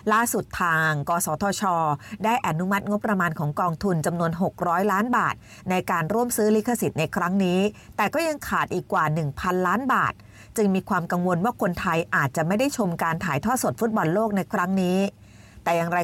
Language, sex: Thai, female